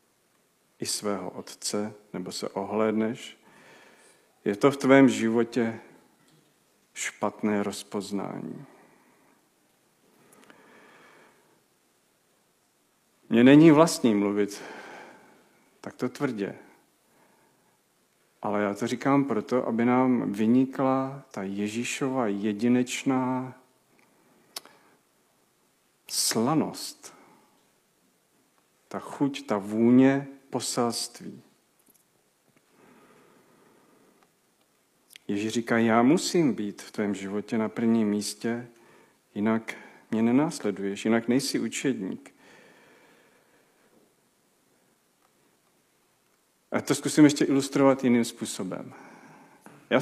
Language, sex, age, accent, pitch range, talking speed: Czech, male, 50-69, native, 105-130 Hz, 75 wpm